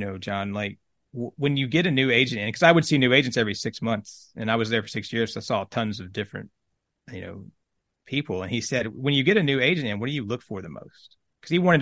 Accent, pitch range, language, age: American, 105-135 Hz, English, 30-49